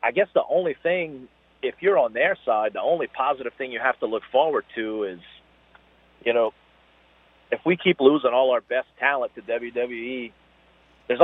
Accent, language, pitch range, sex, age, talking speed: American, English, 110-155 Hz, male, 40-59, 180 wpm